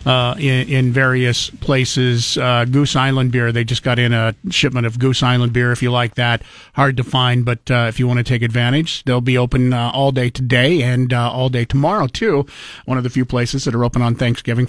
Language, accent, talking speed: English, American, 235 wpm